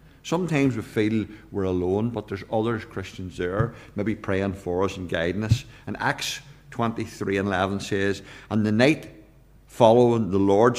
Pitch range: 105-125 Hz